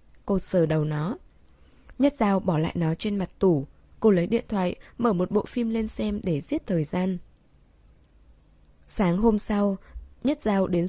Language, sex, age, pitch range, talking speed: Vietnamese, female, 10-29, 155-210 Hz, 175 wpm